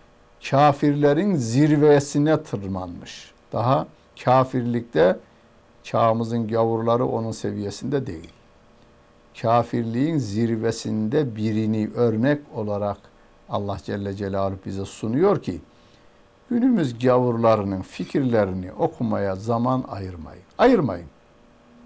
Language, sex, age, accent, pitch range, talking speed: Turkish, male, 60-79, native, 105-145 Hz, 75 wpm